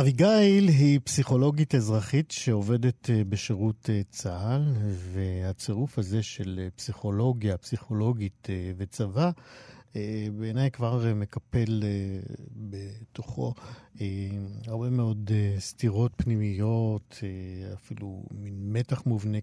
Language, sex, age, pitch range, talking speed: Hebrew, male, 50-69, 100-125 Hz, 75 wpm